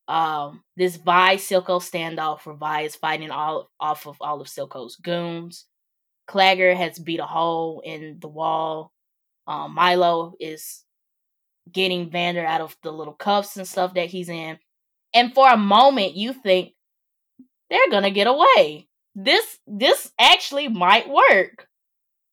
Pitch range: 170-225 Hz